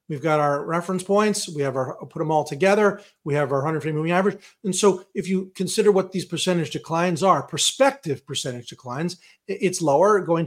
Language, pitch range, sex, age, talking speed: English, 145-185 Hz, male, 40-59, 195 wpm